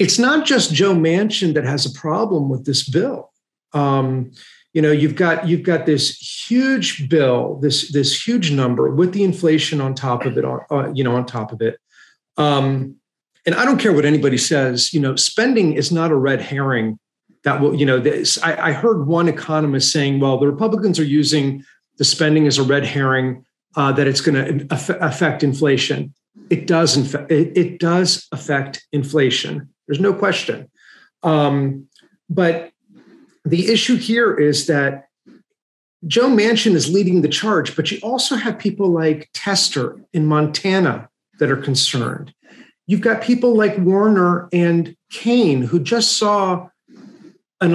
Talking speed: 165 wpm